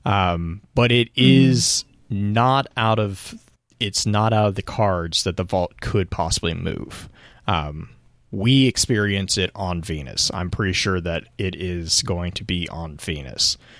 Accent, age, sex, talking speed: American, 30-49, male, 155 wpm